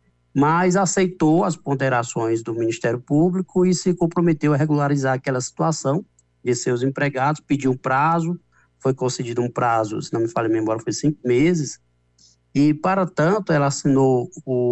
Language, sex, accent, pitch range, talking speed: Portuguese, male, Brazilian, 115-155 Hz, 160 wpm